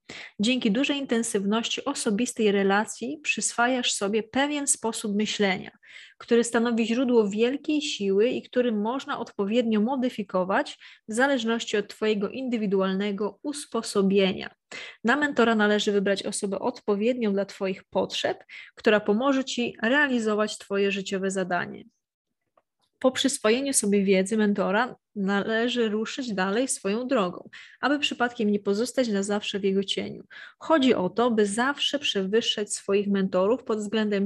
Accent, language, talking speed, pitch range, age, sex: native, Polish, 125 wpm, 205-245 Hz, 20-39, female